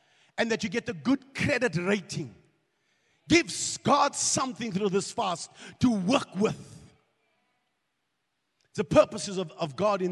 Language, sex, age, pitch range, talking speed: English, male, 50-69, 180-270 Hz, 135 wpm